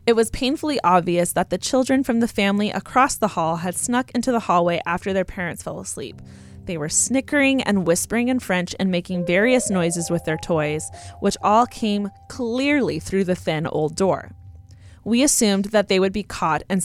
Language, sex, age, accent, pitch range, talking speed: English, female, 20-39, American, 175-230 Hz, 190 wpm